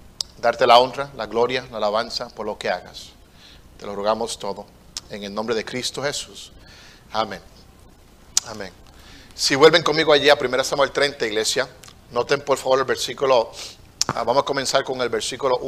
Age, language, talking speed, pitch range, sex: 50-69, Spanish, 165 wpm, 110-145 Hz, male